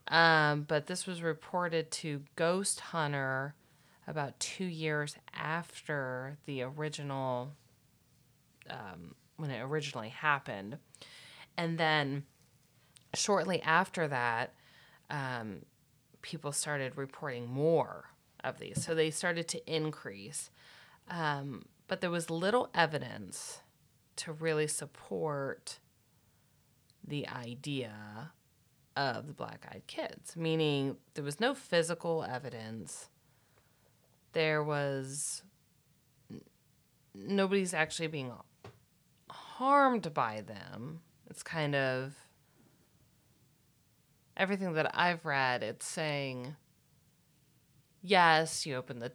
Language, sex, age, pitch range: English, female, 30-49, 135-165 Hz